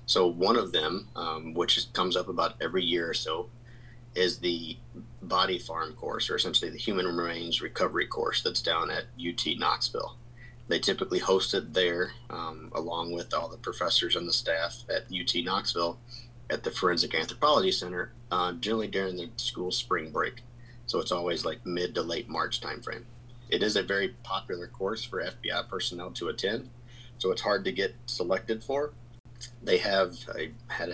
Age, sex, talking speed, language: 30-49, male, 175 wpm, English